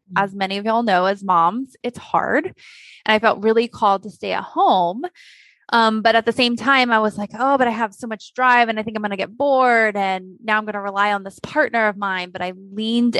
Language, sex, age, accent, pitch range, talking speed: English, female, 20-39, American, 195-235 Hz, 255 wpm